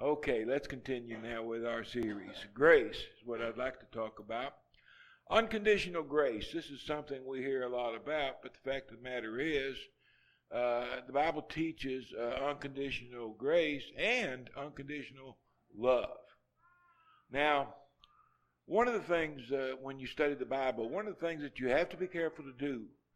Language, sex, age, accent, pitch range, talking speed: English, male, 60-79, American, 115-145 Hz, 170 wpm